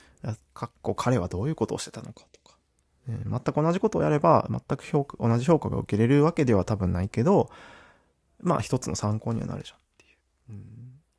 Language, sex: Japanese, male